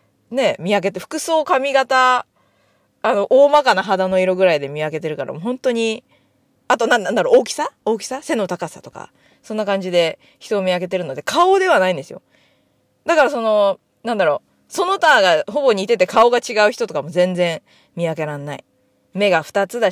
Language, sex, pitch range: Japanese, female, 175-255 Hz